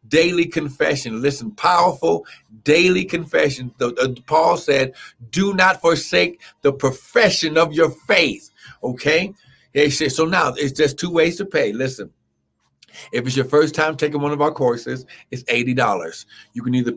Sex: male